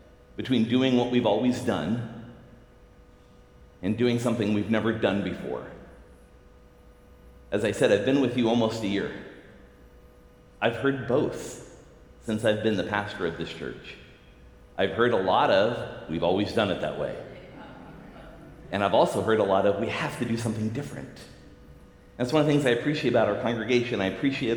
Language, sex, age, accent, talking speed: English, male, 40-59, American, 170 wpm